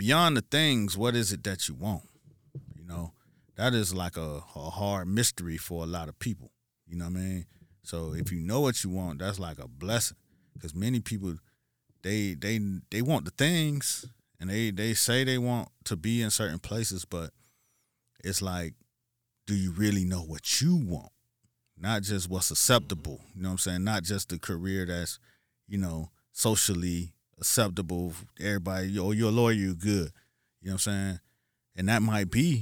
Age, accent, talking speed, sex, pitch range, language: 30-49, American, 190 wpm, male, 90-115 Hz, English